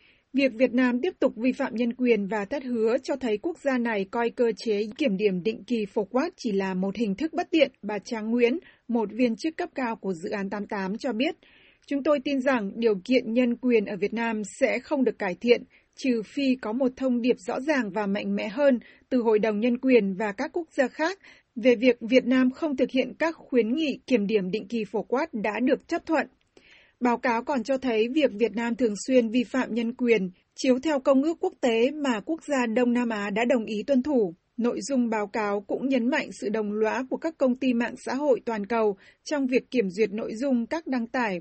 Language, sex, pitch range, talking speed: Vietnamese, female, 215-265 Hz, 240 wpm